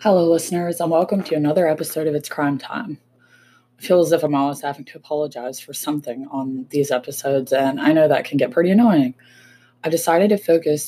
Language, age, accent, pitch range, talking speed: English, 20-39, American, 130-155 Hz, 205 wpm